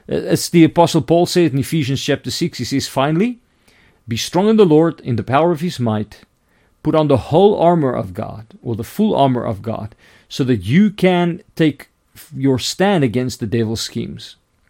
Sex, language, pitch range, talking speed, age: male, English, 115-165 Hz, 190 wpm, 40-59